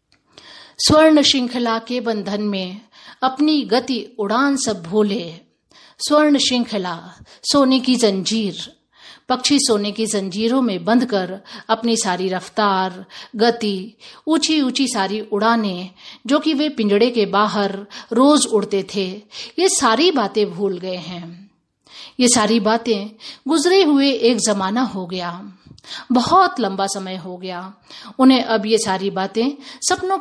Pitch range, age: 200-275 Hz, 50-69